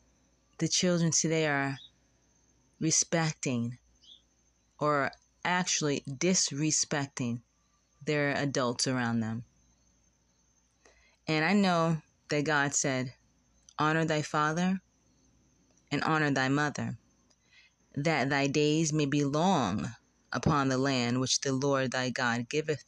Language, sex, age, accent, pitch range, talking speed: English, female, 20-39, American, 125-155 Hz, 105 wpm